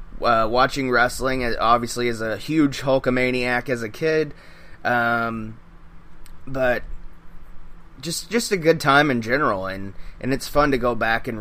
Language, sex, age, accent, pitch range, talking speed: English, male, 20-39, American, 115-140 Hz, 145 wpm